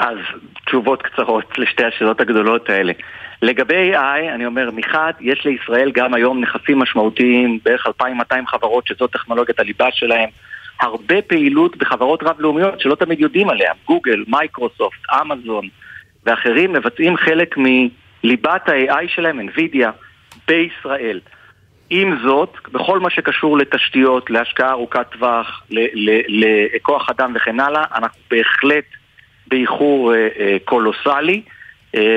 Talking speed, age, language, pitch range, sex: 125 wpm, 40-59, Hebrew, 115-155 Hz, male